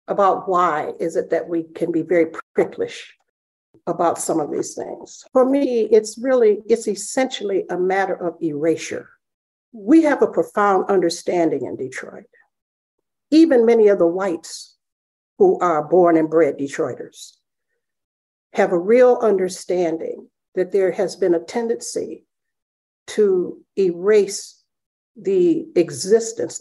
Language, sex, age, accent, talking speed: English, female, 60-79, American, 130 wpm